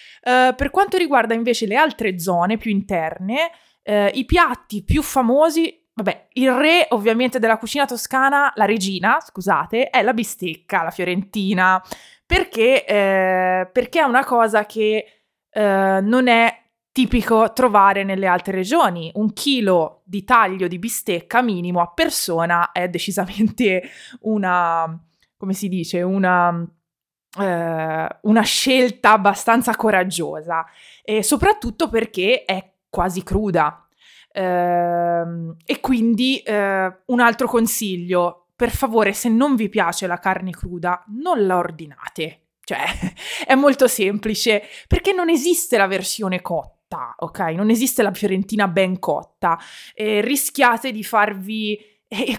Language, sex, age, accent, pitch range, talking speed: Italian, female, 20-39, native, 185-250 Hz, 120 wpm